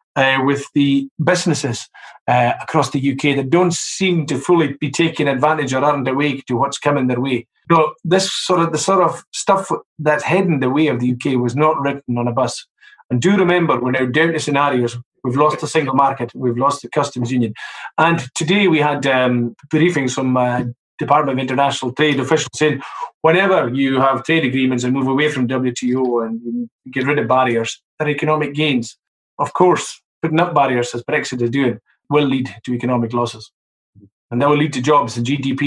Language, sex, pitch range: English, male, 125-150 Hz